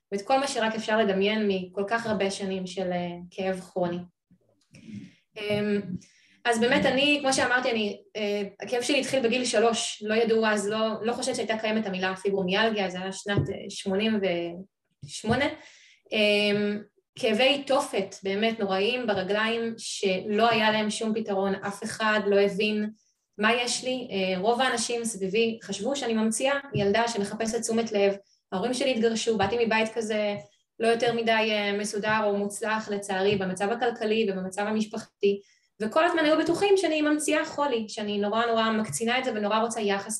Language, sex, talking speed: Hebrew, female, 150 wpm